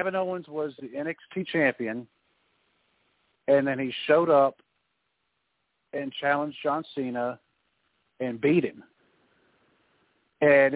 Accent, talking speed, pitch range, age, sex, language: American, 105 wpm, 130-160 Hz, 50-69, male, English